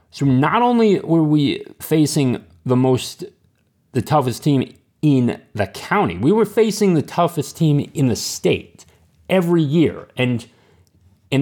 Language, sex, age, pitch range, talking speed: English, male, 30-49, 100-150 Hz, 140 wpm